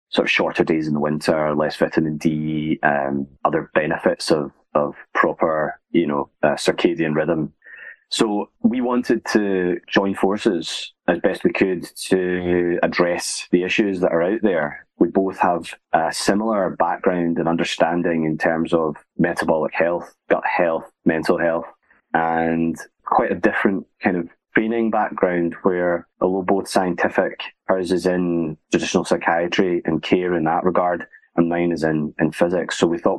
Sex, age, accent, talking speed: male, 30-49, British, 155 wpm